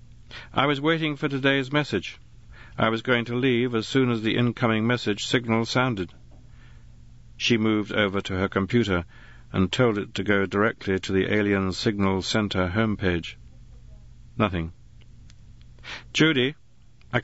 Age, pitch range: 50-69, 95-125 Hz